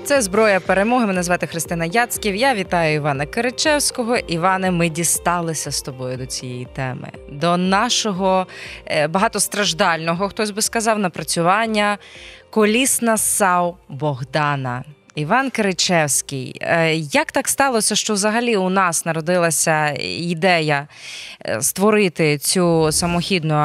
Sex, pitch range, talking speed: female, 160-235 Hz, 110 wpm